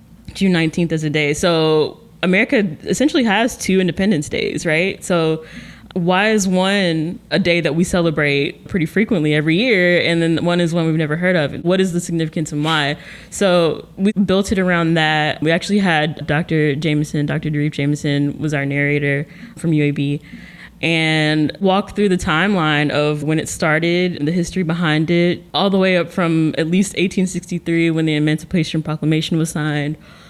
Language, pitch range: English, 150-180 Hz